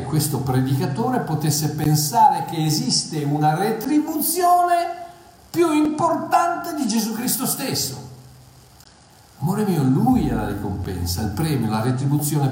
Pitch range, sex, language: 125-175 Hz, male, Italian